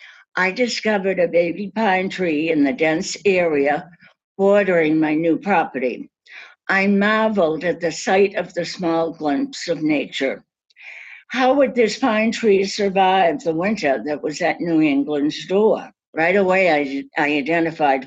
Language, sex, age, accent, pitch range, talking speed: English, female, 60-79, American, 150-195 Hz, 145 wpm